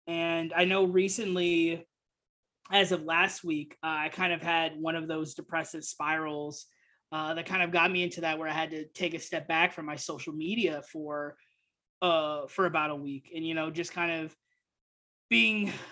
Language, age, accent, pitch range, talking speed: English, 20-39, American, 160-190 Hz, 190 wpm